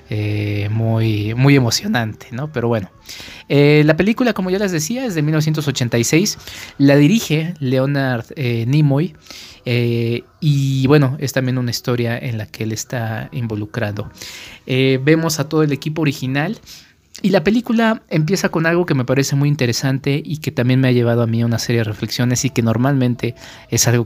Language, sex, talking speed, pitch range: Spanish, male, 175 wpm, 110-145 Hz